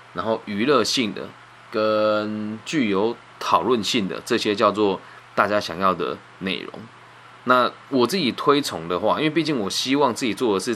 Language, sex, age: Chinese, male, 20-39